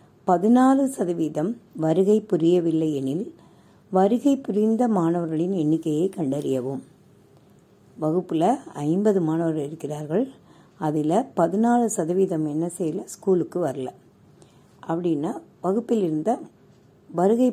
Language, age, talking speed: Tamil, 60-79, 80 wpm